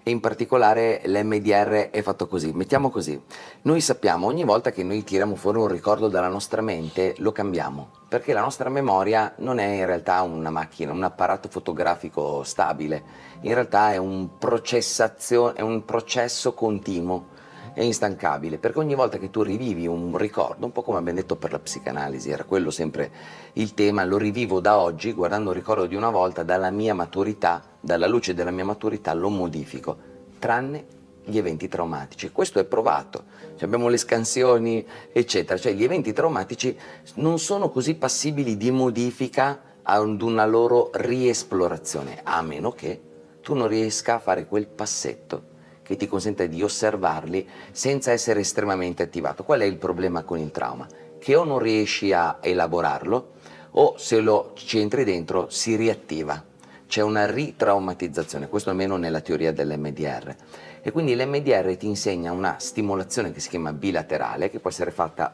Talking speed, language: 160 wpm, Italian